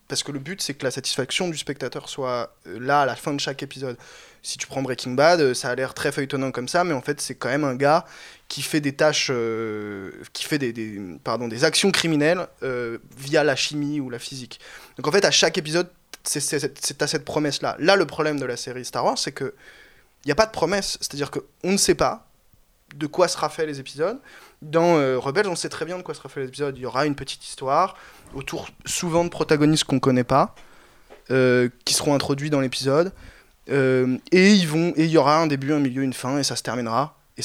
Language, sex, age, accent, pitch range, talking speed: French, male, 20-39, French, 130-155 Hz, 235 wpm